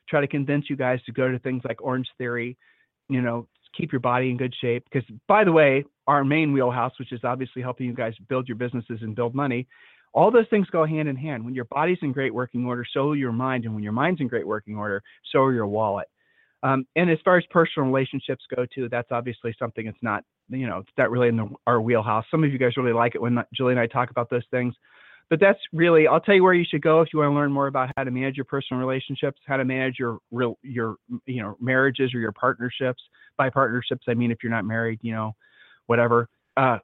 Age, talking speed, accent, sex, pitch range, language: 40-59, 250 wpm, American, male, 120-140 Hz, English